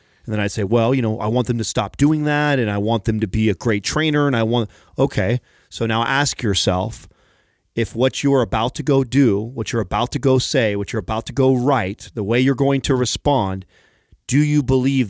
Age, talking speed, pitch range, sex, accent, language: 30-49, 235 wpm, 105-130 Hz, male, American, English